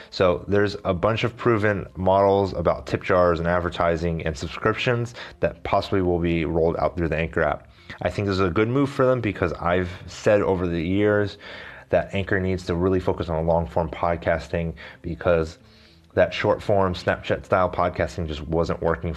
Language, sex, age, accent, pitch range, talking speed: English, male, 30-49, American, 85-100 Hz, 175 wpm